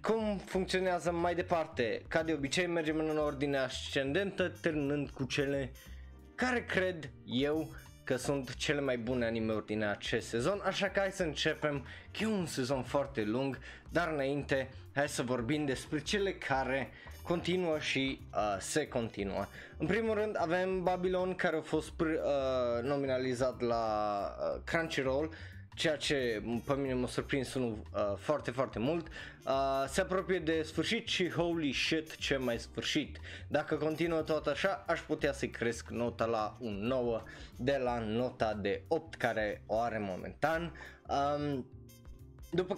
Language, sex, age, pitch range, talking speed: Romanian, male, 20-39, 120-165 Hz, 145 wpm